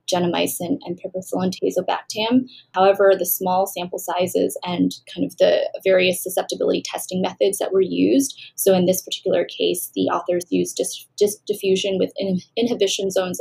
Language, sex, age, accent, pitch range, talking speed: English, female, 10-29, American, 180-210 Hz, 145 wpm